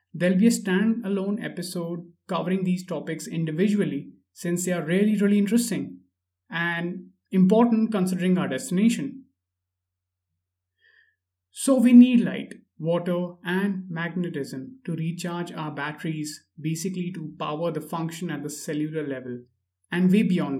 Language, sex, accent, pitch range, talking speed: English, male, Indian, 145-190 Hz, 125 wpm